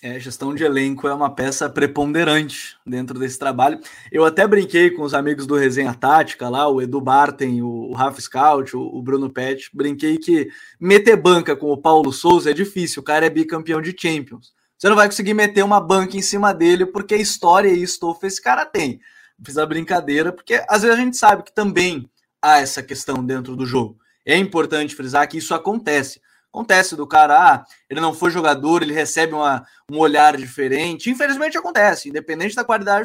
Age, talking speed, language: 20-39, 190 wpm, Portuguese